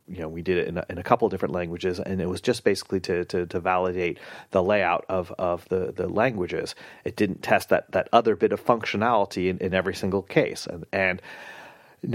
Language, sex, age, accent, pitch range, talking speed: English, male, 30-49, American, 95-120 Hz, 225 wpm